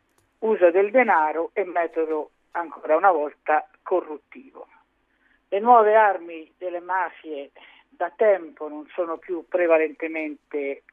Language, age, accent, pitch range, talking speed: Italian, 50-69, native, 160-220 Hz, 110 wpm